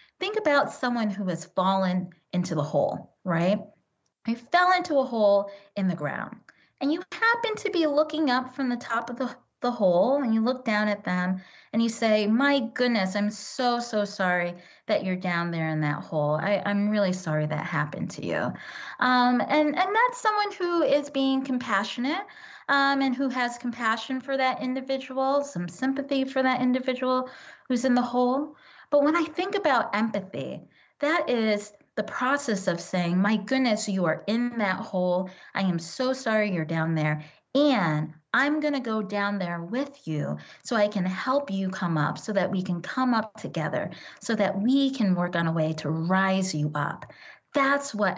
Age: 30-49